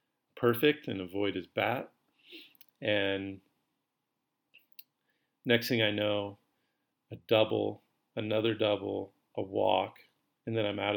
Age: 40-59